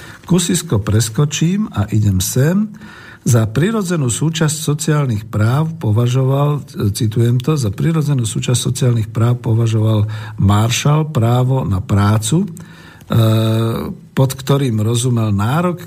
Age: 50-69